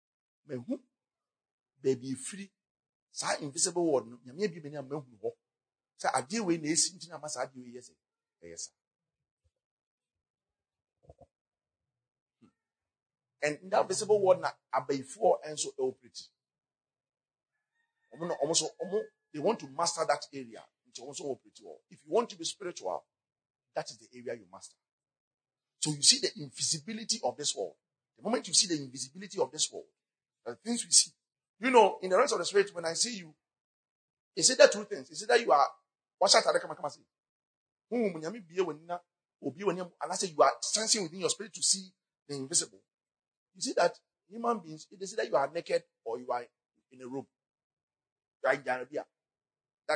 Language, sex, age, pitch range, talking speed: English, male, 40-59, 145-200 Hz, 125 wpm